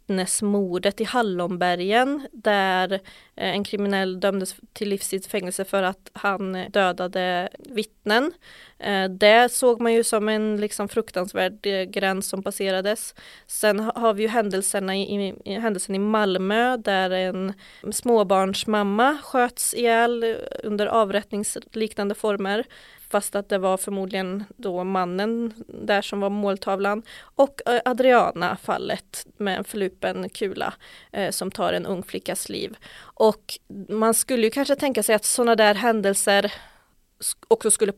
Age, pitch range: 20-39, 190-225 Hz